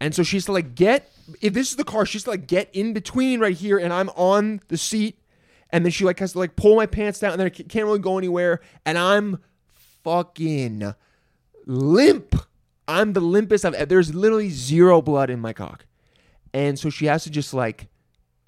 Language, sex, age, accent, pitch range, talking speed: English, male, 20-39, American, 130-190 Hz, 210 wpm